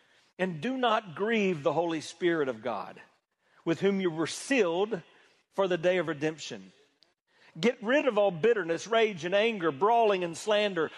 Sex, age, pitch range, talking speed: male, 40-59, 135-180 Hz, 165 wpm